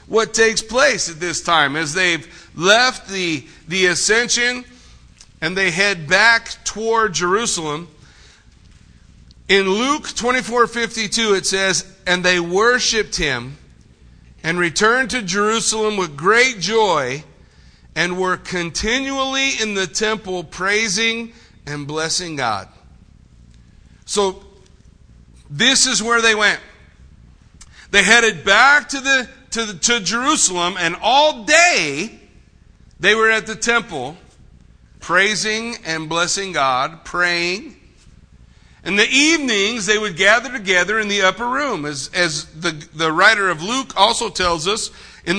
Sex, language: male, English